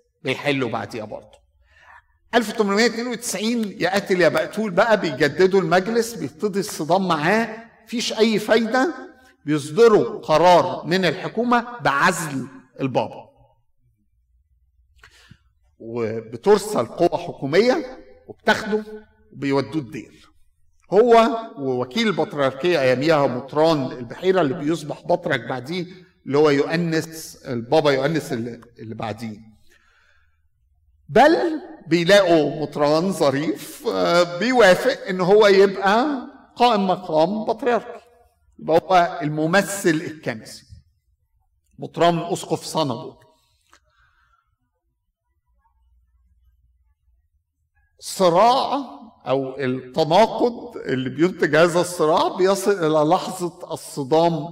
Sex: male